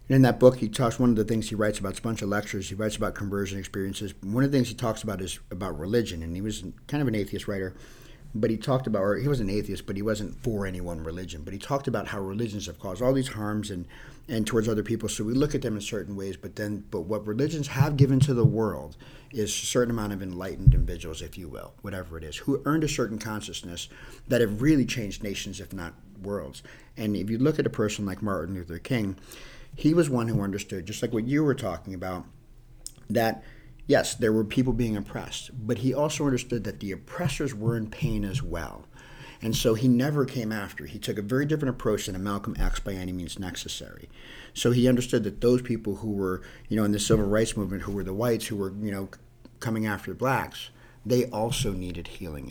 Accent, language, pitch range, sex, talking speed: American, English, 100-125 Hz, male, 235 wpm